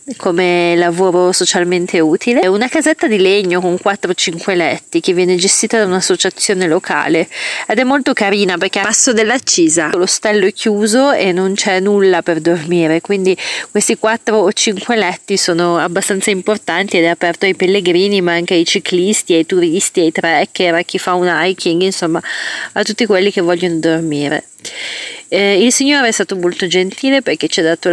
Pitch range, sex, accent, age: 175-210 Hz, female, native, 30-49